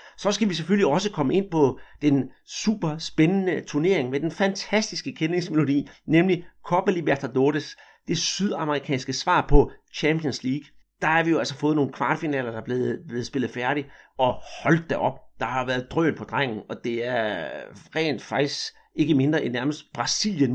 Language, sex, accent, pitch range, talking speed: Danish, male, native, 135-170 Hz, 170 wpm